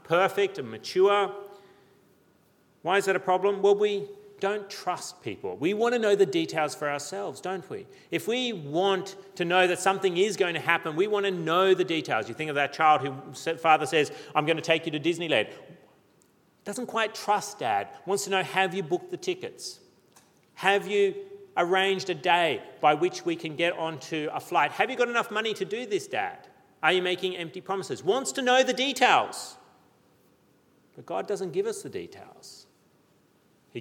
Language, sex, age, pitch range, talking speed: English, male, 40-59, 145-210 Hz, 190 wpm